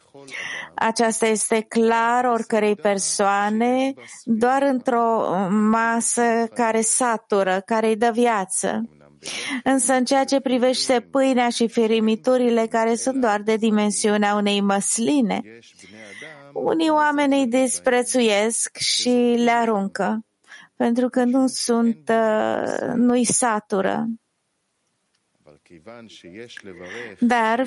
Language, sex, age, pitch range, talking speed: English, female, 30-49, 200-240 Hz, 90 wpm